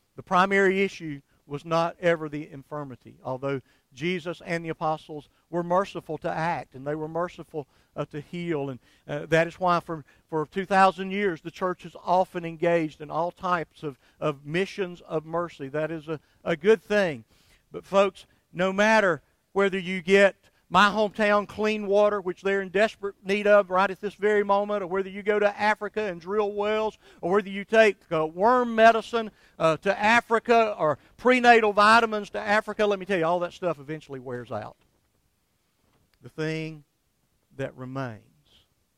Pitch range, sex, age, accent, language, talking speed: 150-205 Hz, male, 50-69, American, English, 170 wpm